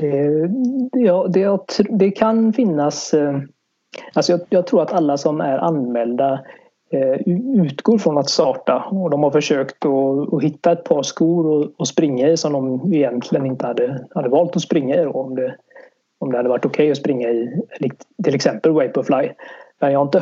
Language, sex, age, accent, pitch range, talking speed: Swedish, male, 30-49, native, 140-185 Hz, 160 wpm